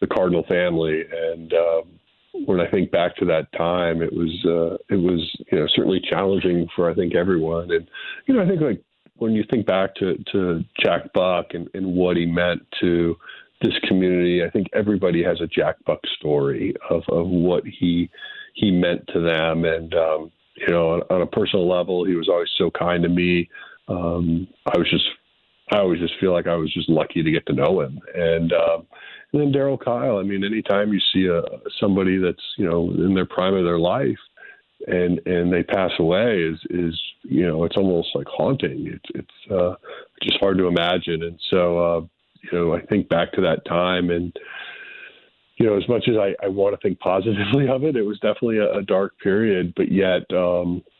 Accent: American